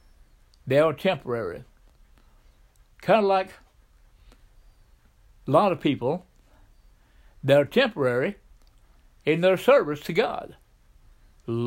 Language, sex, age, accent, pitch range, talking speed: English, male, 60-79, American, 135-210 Hz, 95 wpm